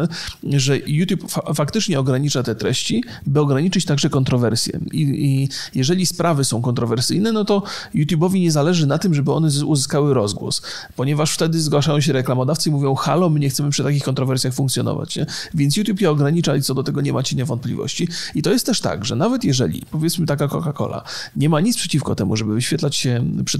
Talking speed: 190 wpm